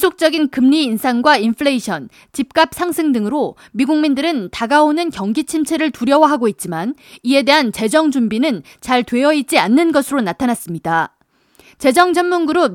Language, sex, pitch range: Korean, female, 245-330 Hz